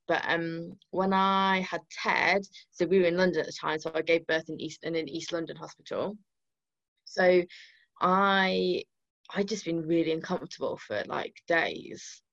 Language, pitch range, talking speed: English, 160-195 Hz, 170 wpm